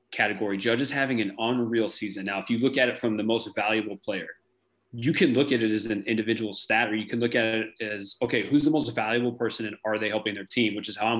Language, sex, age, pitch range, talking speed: English, male, 20-39, 105-120 Hz, 265 wpm